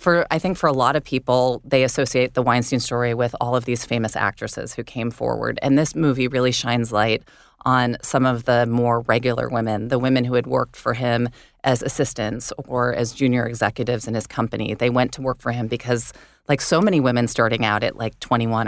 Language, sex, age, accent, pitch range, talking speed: English, female, 30-49, American, 115-135 Hz, 215 wpm